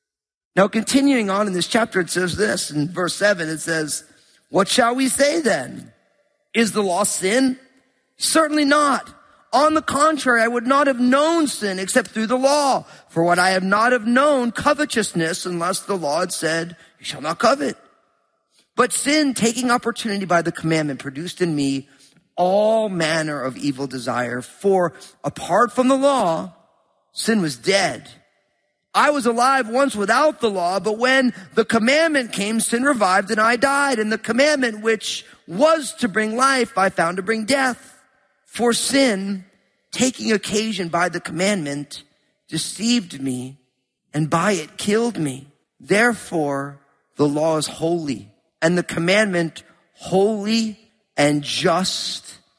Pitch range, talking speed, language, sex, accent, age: 165-245 Hz, 150 wpm, English, male, American, 40-59